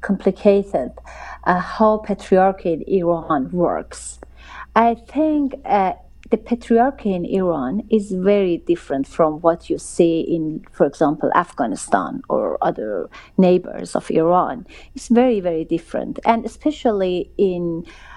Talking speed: 120 wpm